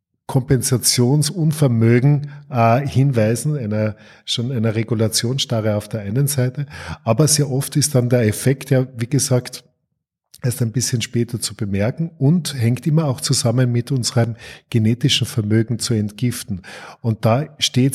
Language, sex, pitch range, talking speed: German, male, 115-135 Hz, 135 wpm